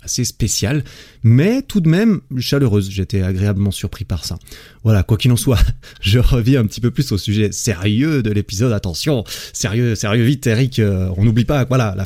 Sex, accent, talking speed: male, French, 195 wpm